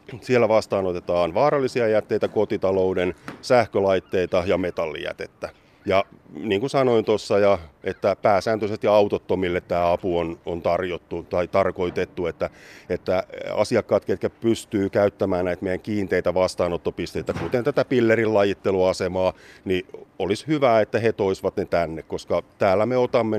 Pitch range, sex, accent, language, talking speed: 90-110 Hz, male, native, Finnish, 125 wpm